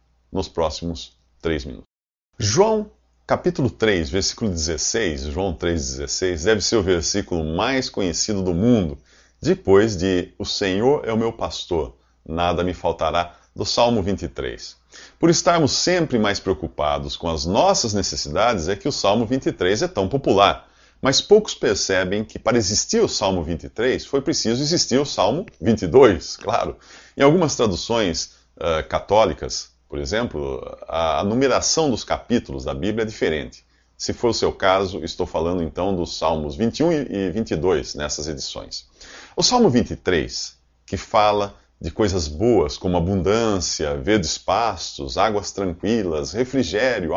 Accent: Brazilian